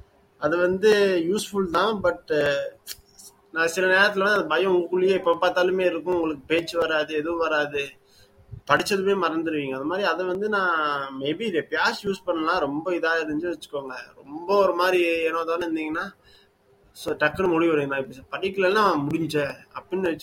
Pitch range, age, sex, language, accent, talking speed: 145-185 Hz, 20-39, male, English, Indian, 75 wpm